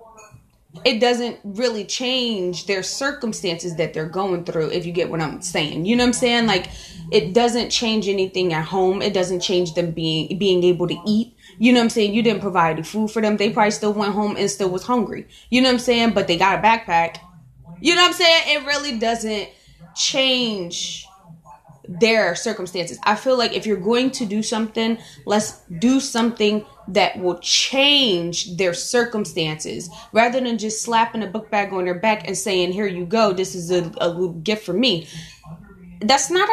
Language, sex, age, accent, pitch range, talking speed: English, female, 20-39, American, 180-245 Hz, 195 wpm